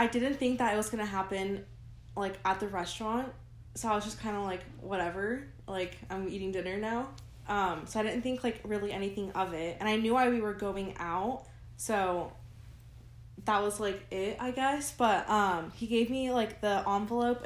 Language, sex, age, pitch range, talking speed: English, female, 10-29, 170-210 Hz, 205 wpm